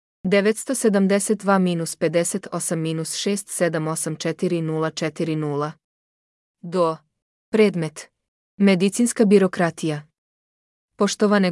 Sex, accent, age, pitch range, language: female, Croatian, 20-39, 155-200 Hz, English